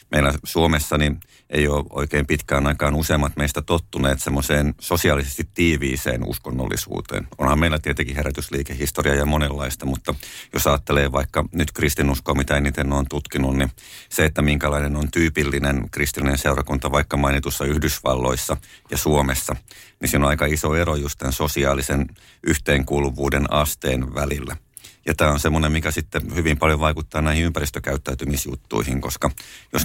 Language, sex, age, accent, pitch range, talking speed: Finnish, male, 50-69, native, 70-75 Hz, 140 wpm